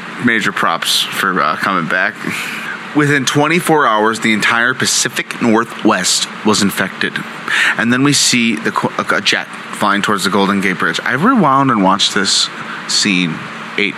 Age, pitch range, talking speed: 30-49, 100-135 Hz, 155 wpm